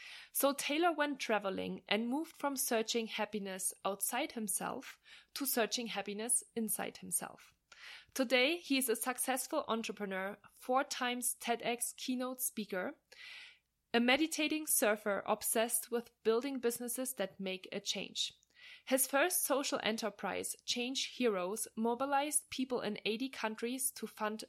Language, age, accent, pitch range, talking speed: English, 20-39, German, 205-255 Hz, 125 wpm